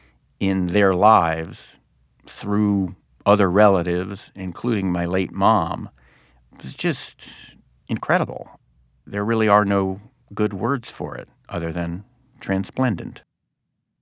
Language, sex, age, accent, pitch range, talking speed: English, male, 50-69, American, 90-125 Hz, 105 wpm